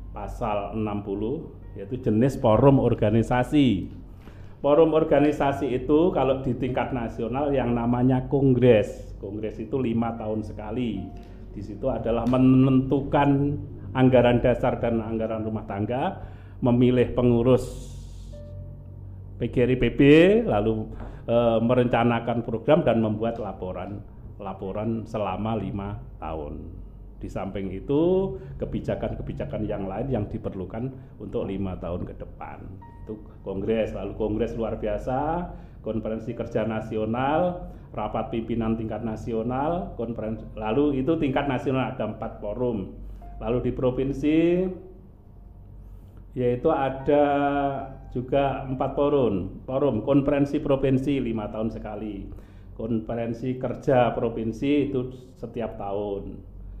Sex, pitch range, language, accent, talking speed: male, 105-130 Hz, Indonesian, native, 105 wpm